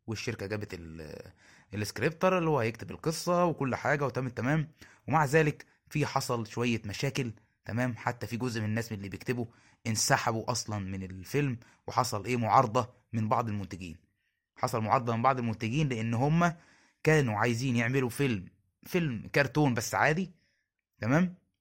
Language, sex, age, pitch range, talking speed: Arabic, male, 20-39, 105-140 Hz, 145 wpm